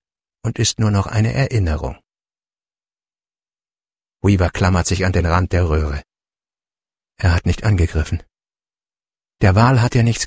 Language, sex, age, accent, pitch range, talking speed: English, male, 60-79, German, 95-135 Hz, 135 wpm